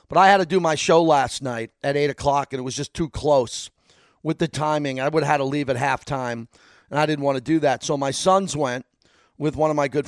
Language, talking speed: English, 270 wpm